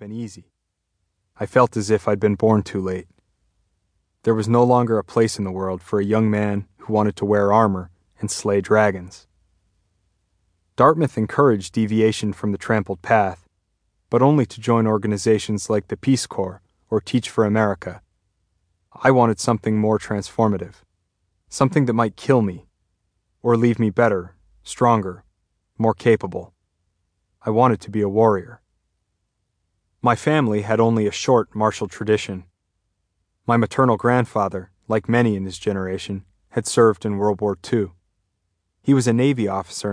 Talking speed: 155 wpm